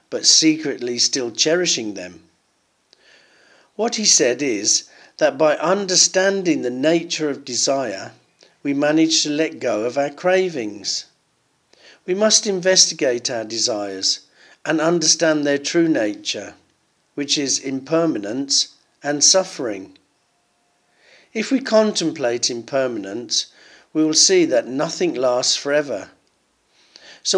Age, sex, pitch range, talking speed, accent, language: 50-69, male, 135-180 Hz, 110 wpm, British, English